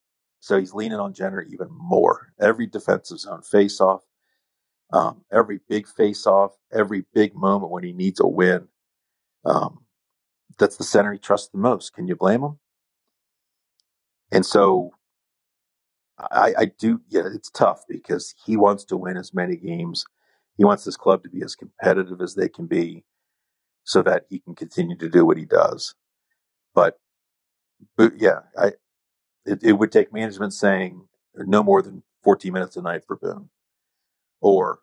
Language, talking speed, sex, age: English, 165 wpm, male, 50-69